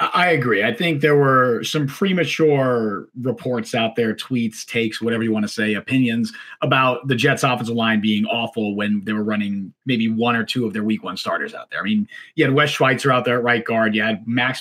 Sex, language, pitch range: male, English, 115-155 Hz